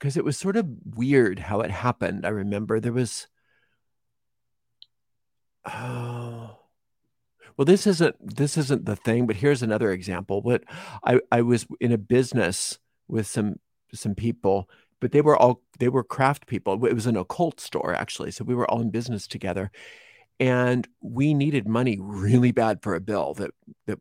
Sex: male